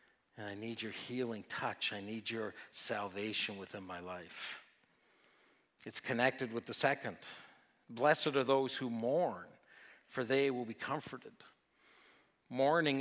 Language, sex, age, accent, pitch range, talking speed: English, male, 50-69, American, 115-135 Hz, 135 wpm